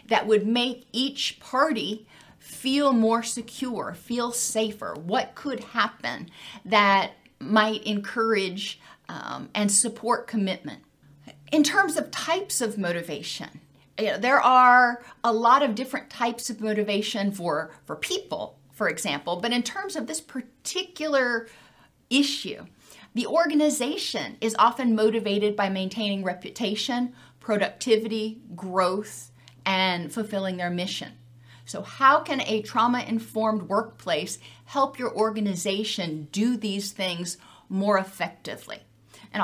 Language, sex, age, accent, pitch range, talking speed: English, female, 40-59, American, 190-245 Hz, 115 wpm